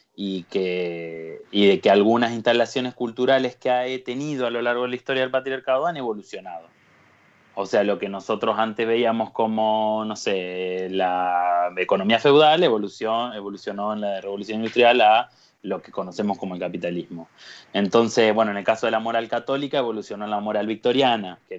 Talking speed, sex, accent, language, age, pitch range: 170 wpm, male, Argentinian, Spanish, 20-39, 100-125 Hz